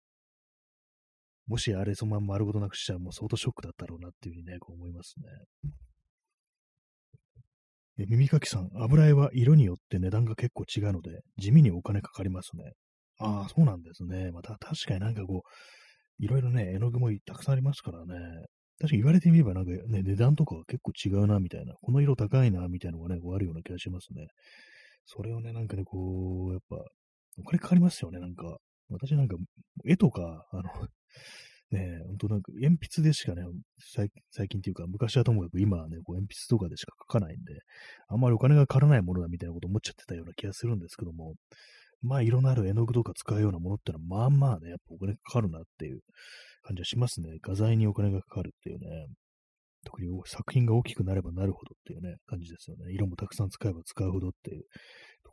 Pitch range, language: 90-120 Hz, Japanese